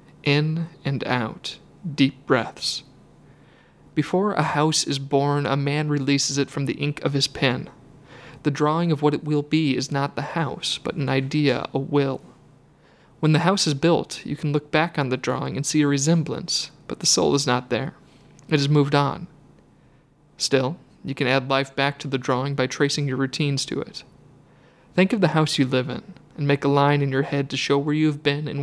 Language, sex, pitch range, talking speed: English, male, 135-150 Hz, 205 wpm